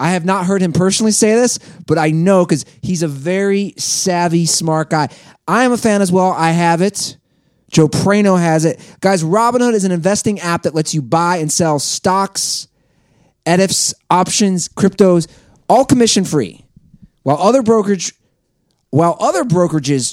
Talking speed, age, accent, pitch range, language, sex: 155 wpm, 30-49, American, 150-195 Hz, English, male